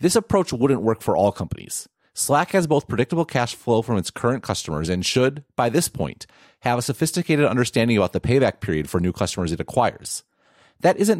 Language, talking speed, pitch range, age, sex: English, 200 wpm, 100-140 Hz, 30-49, male